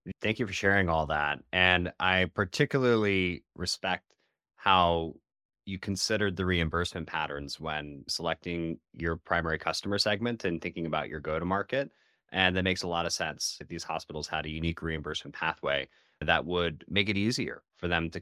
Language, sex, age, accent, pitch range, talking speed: English, male, 30-49, American, 80-100 Hz, 165 wpm